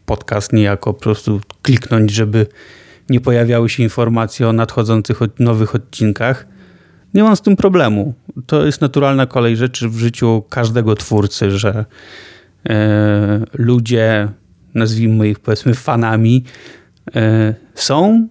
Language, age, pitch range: Polish, 30-49, 110-140 Hz